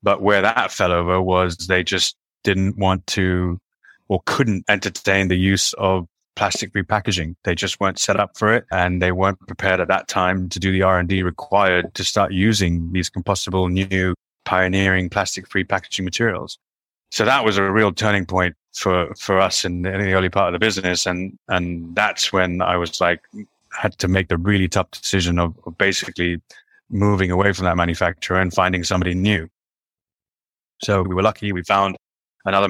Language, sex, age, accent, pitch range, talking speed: English, male, 20-39, British, 90-100 Hz, 180 wpm